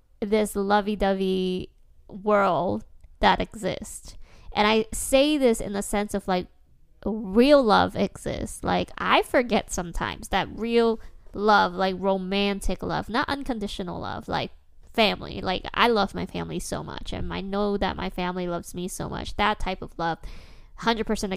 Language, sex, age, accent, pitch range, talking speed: English, female, 10-29, American, 185-220 Hz, 150 wpm